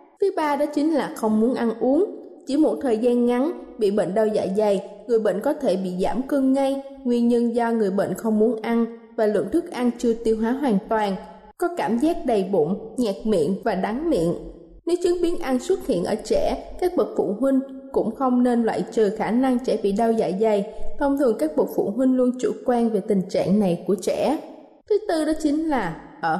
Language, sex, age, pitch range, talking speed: Vietnamese, female, 20-39, 215-290 Hz, 225 wpm